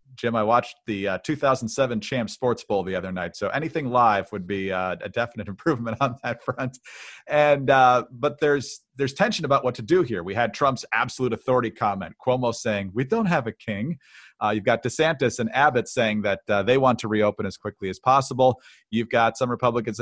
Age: 40-59